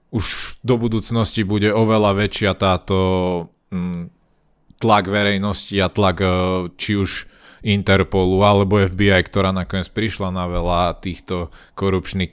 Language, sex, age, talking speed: Slovak, male, 20-39, 110 wpm